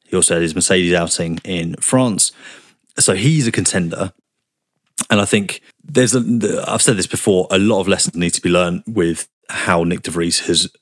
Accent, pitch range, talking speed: British, 85-100 Hz, 195 wpm